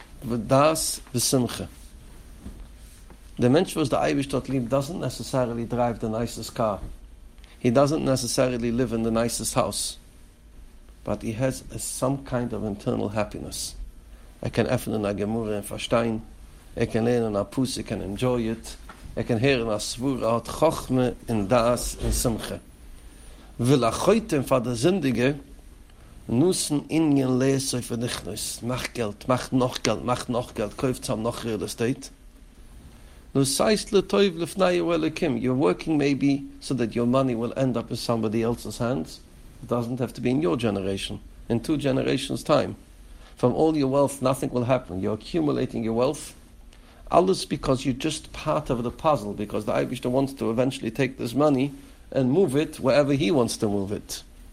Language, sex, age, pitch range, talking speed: English, male, 60-79, 110-135 Hz, 140 wpm